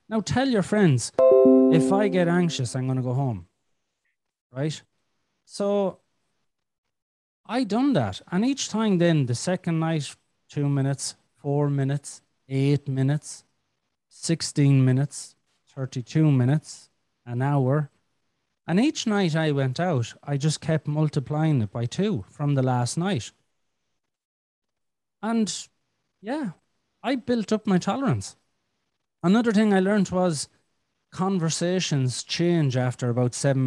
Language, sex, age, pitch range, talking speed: English, male, 30-49, 130-180 Hz, 125 wpm